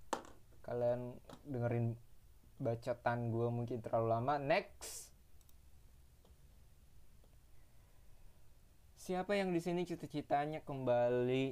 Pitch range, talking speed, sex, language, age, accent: 110-125 Hz, 75 wpm, male, Indonesian, 20-39, native